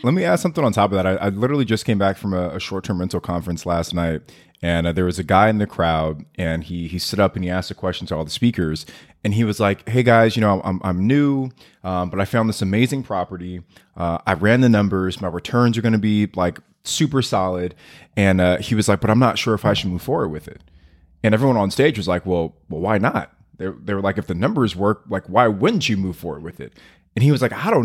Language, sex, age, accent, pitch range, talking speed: English, male, 20-39, American, 90-115 Hz, 270 wpm